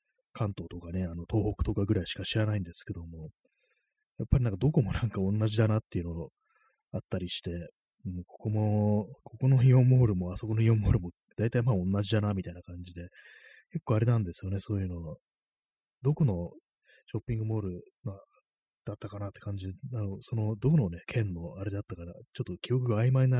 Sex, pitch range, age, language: male, 90-120 Hz, 30-49, Japanese